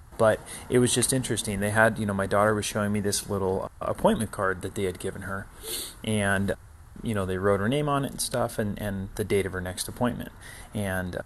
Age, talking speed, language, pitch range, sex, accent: 30-49, 230 wpm, English, 100-125 Hz, male, American